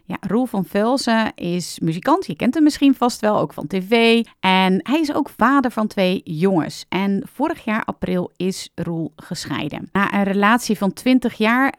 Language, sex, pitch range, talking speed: Dutch, female, 180-245 Hz, 185 wpm